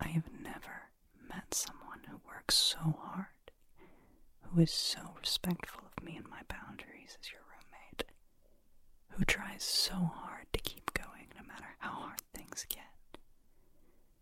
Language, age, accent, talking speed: English, 30-49, American, 145 wpm